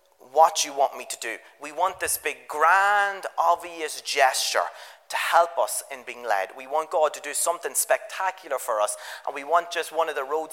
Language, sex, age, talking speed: English, male, 30-49, 205 wpm